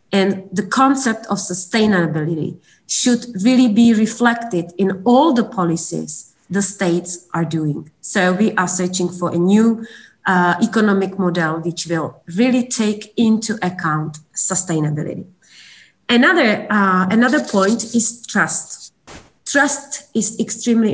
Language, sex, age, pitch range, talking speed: Slovak, female, 30-49, 180-225 Hz, 125 wpm